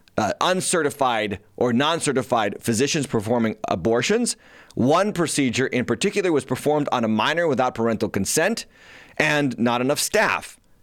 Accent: American